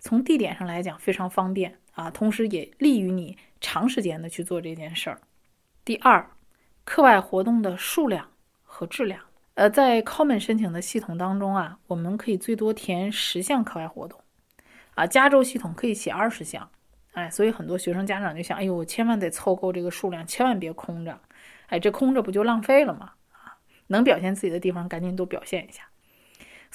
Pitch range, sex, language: 175-230 Hz, female, Chinese